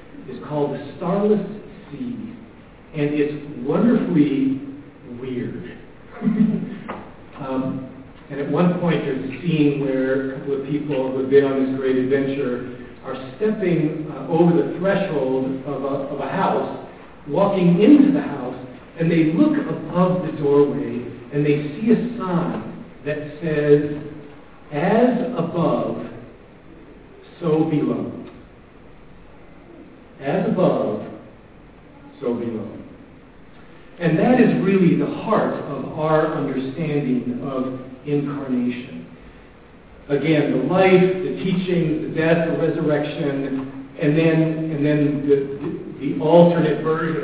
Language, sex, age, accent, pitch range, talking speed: English, male, 50-69, American, 135-180 Hz, 115 wpm